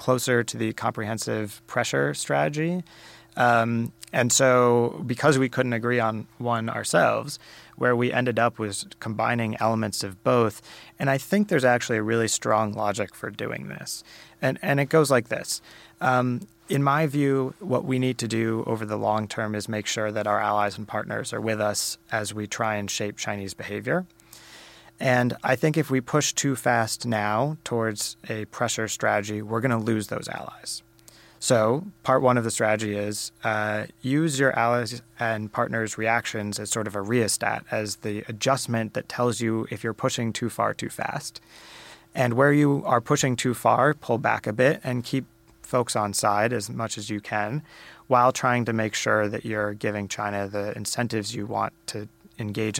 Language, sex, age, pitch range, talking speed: English, male, 30-49, 105-125 Hz, 185 wpm